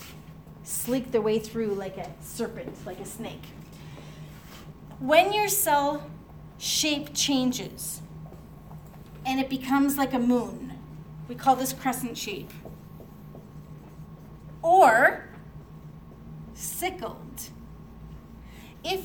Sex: female